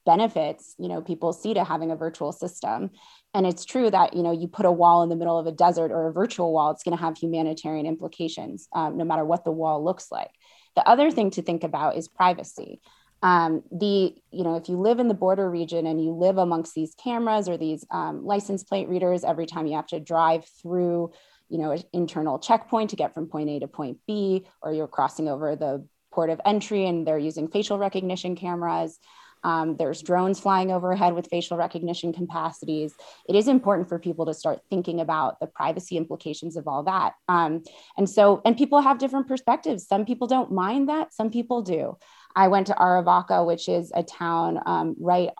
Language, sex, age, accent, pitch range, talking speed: English, female, 20-39, American, 160-195 Hz, 210 wpm